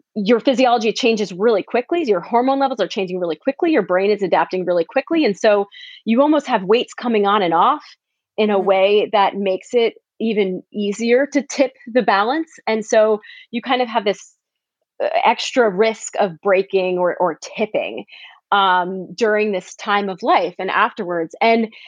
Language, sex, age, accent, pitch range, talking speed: English, female, 30-49, American, 200-265 Hz, 175 wpm